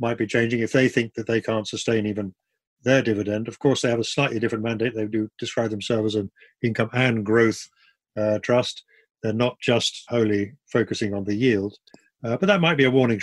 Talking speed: 215 wpm